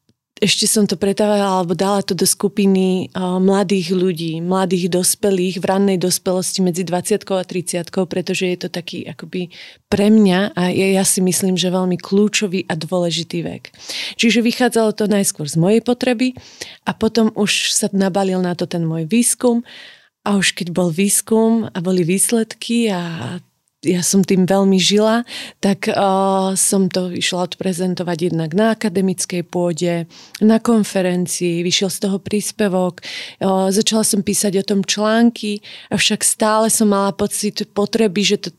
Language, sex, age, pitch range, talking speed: Slovak, female, 30-49, 180-205 Hz, 155 wpm